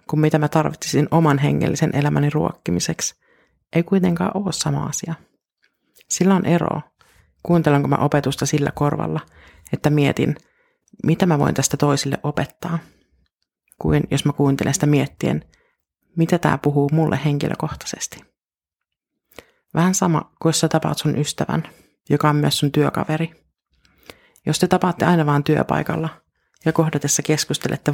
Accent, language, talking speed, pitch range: native, Finnish, 130 wpm, 145-170 Hz